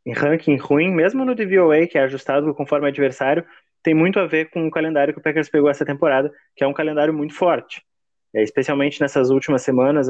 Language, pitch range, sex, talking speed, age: Portuguese, 140-170 Hz, male, 200 wpm, 20-39